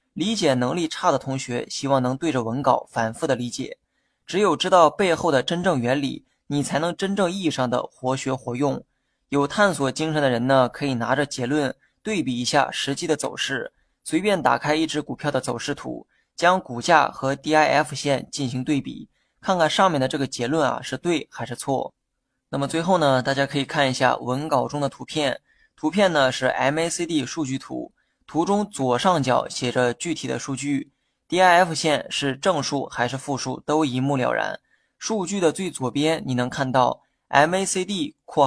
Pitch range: 130-155 Hz